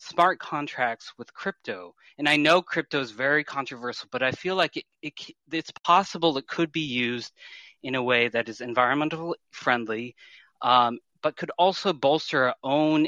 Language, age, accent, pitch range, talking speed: English, 30-49, American, 120-160 Hz, 170 wpm